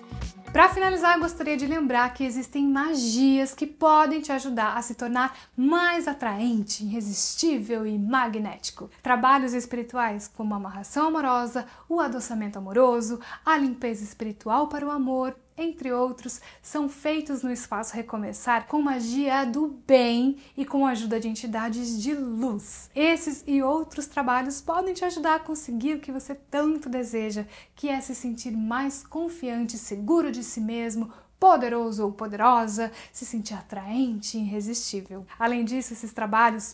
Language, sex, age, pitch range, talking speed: Portuguese, female, 10-29, 225-290 Hz, 150 wpm